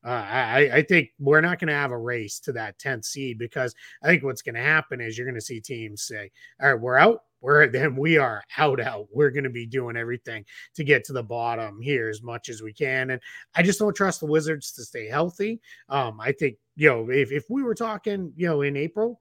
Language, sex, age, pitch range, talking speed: English, male, 30-49, 120-155 Hz, 250 wpm